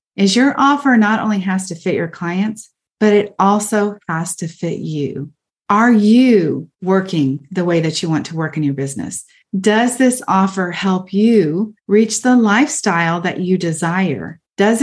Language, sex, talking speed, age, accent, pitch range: English, female, 170 wpm, 40-59, American, 180-225 Hz